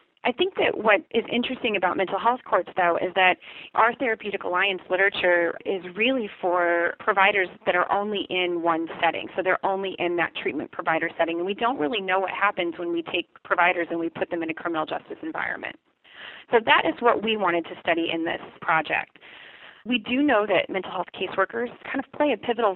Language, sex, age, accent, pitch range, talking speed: English, female, 30-49, American, 170-200 Hz, 205 wpm